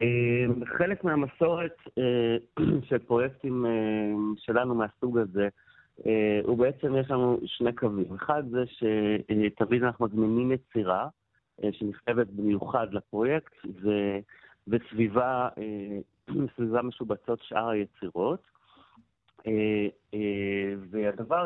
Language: Hebrew